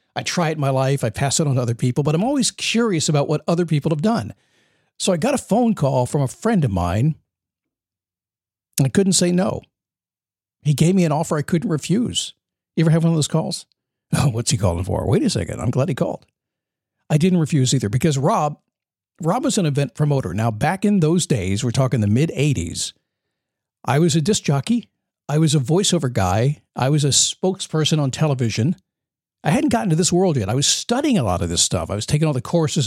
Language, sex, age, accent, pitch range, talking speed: English, male, 50-69, American, 115-175 Hz, 220 wpm